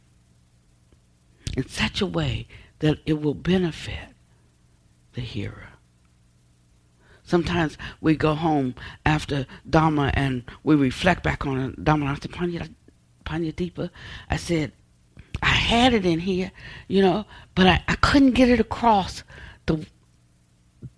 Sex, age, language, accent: female, 60-79, English, American